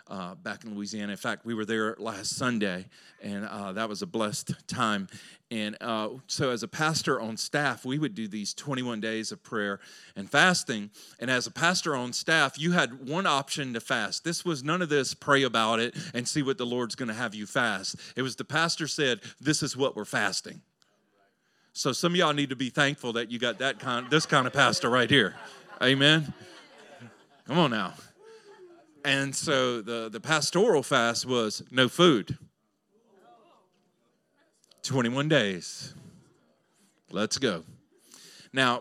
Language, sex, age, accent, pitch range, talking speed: English, male, 40-59, American, 120-165 Hz, 175 wpm